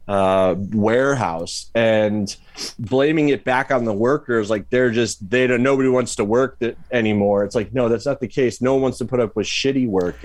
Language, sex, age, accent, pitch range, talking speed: English, male, 30-49, American, 110-130 Hz, 210 wpm